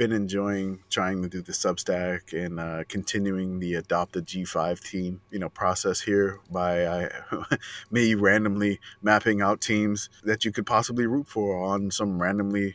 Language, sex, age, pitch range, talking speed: English, male, 20-39, 95-110 Hz, 160 wpm